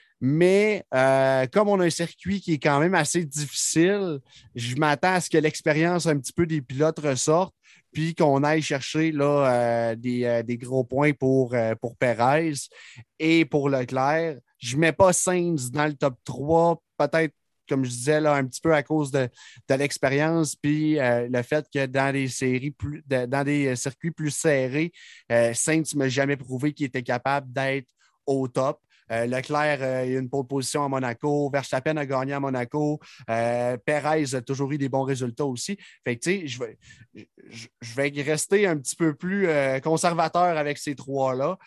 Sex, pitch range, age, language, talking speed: male, 125-155 Hz, 30-49, French, 185 wpm